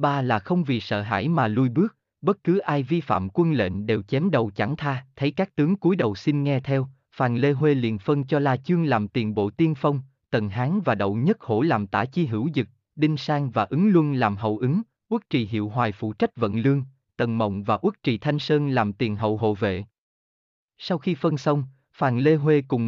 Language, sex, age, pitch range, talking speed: Vietnamese, male, 20-39, 110-160 Hz, 235 wpm